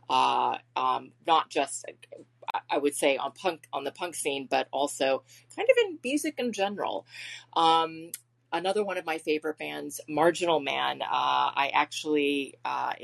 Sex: female